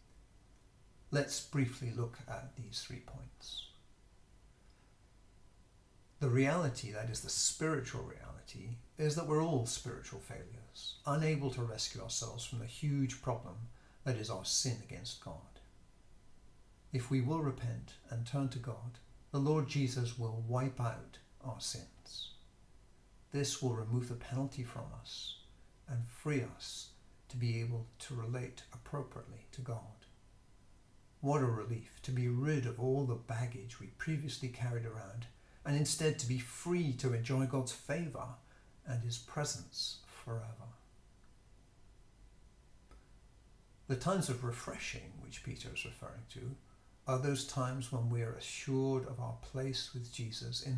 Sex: male